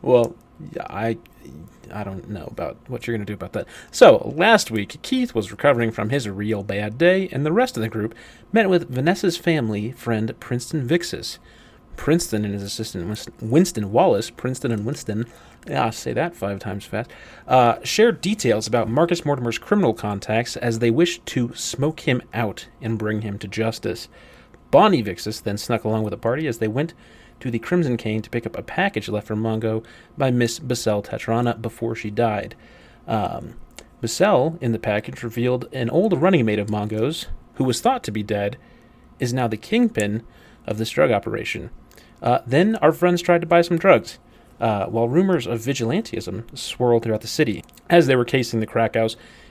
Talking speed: 185 wpm